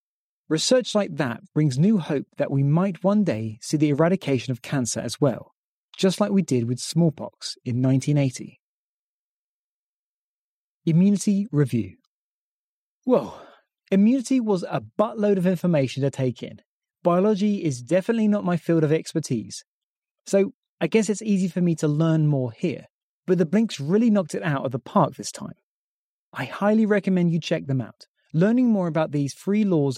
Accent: British